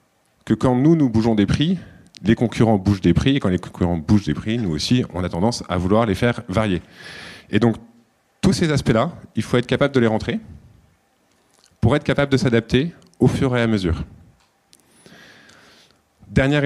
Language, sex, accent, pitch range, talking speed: French, male, French, 100-125 Hz, 185 wpm